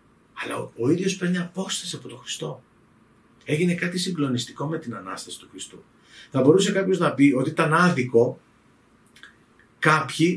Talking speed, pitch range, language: 145 wpm, 125-185 Hz, Greek